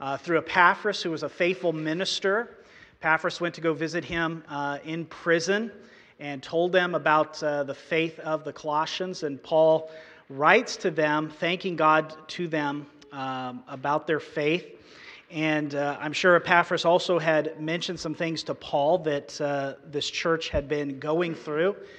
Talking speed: 165 wpm